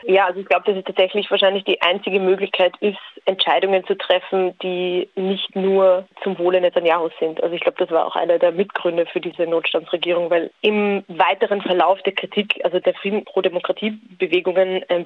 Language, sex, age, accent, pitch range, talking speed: German, female, 20-39, German, 175-195 Hz, 185 wpm